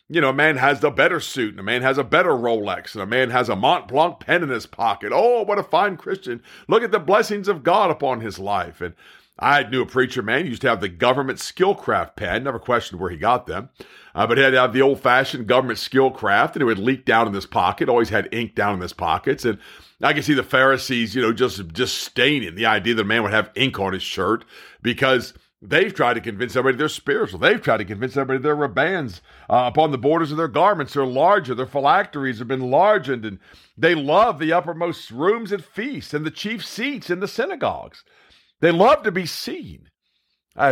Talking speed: 235 wpm